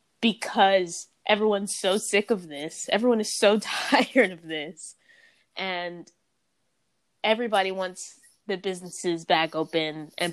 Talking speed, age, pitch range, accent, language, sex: 115 wpm, 20-39, 165-205 Hz, American, English, female